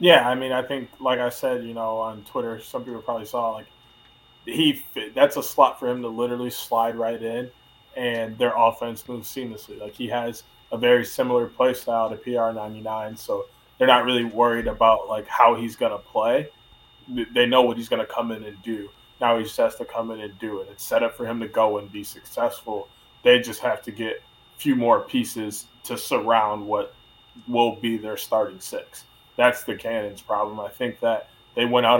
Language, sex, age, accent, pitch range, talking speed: English, male, 20-39, American, 110-125 Hz, 210 wpm